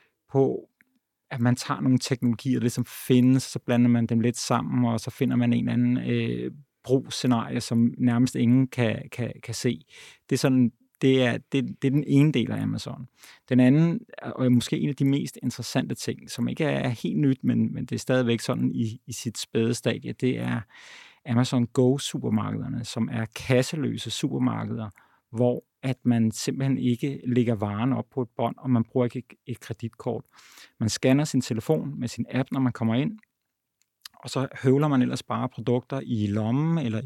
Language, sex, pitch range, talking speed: Danish, male, 115-130 Hz, 190 wpm